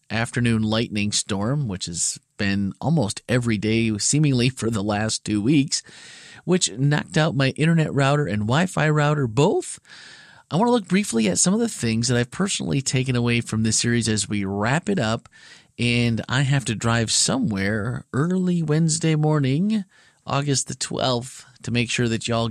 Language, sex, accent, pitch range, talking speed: English, male, American, 105-150 Hz, 175 wpm